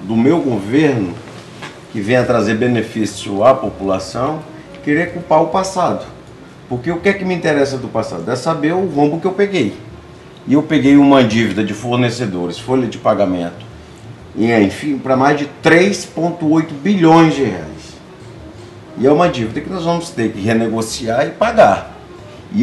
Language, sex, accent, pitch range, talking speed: Portuguese, male, Brazilian, 110-160 Hz, 165 wpm